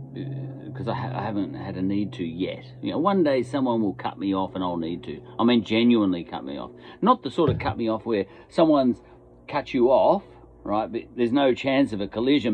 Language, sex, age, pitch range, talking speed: English, male, 40-59, 85-135 Hz, 240 wpm